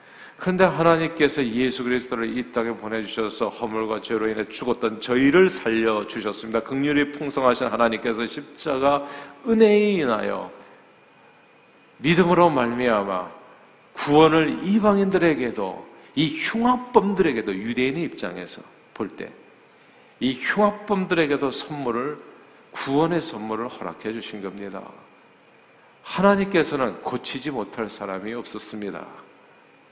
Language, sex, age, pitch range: Korean, male, 50-69, 115-165 Hz